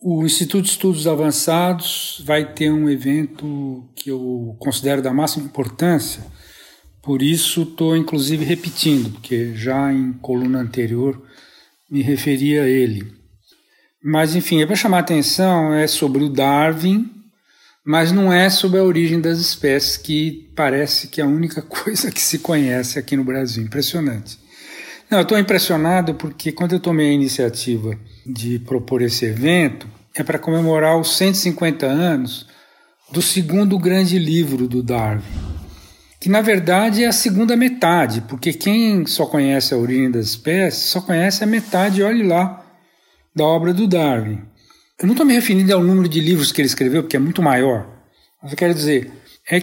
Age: 60-79